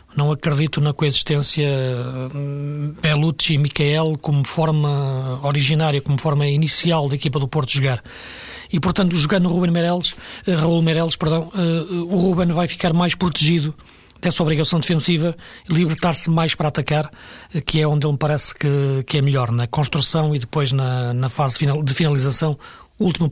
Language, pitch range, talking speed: Portuguese, 145-170 Hz, 150 wpm